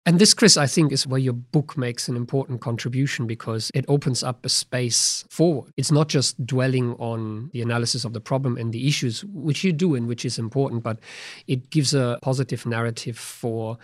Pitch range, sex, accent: 120-135 Hz, male, German